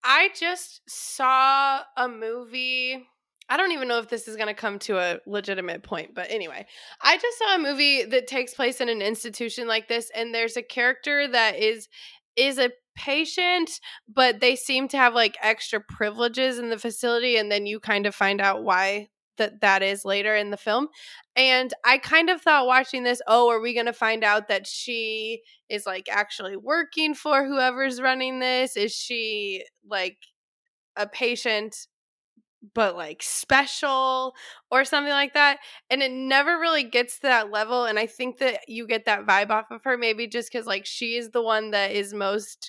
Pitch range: 215-275 Hz